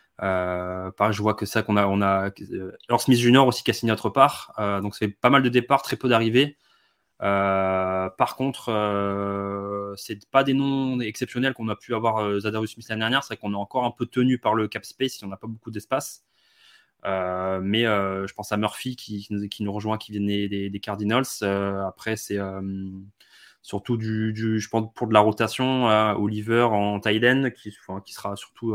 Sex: male